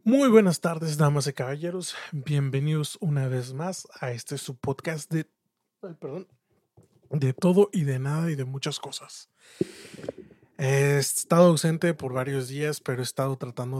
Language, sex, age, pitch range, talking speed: English, male, 30-49, 130-170 Hz, 155 wpm